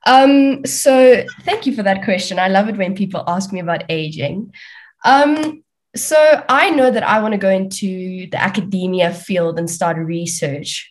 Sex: female